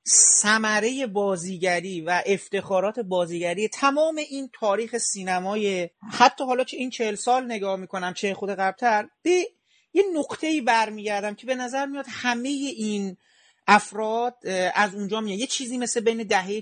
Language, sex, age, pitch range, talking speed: Persian, male, 40-59, 190-245 Hz, 135 wpm